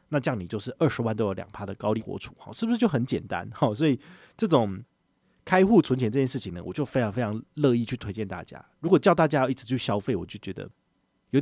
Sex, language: male, Chinese